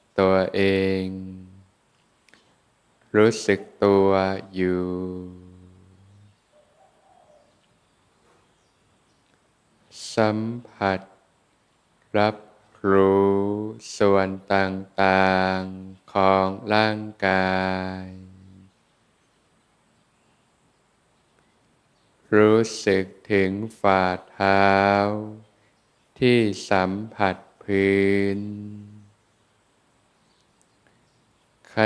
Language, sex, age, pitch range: Thai, male, 20-39, 95-105 Hz